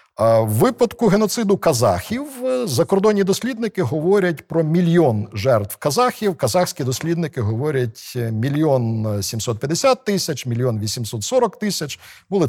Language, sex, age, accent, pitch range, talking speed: Ukrainian, male, 50-69, native, 120-170 Hz, 100 wpm